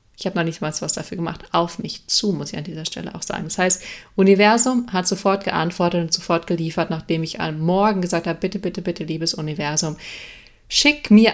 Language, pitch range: German, 165-195 Hz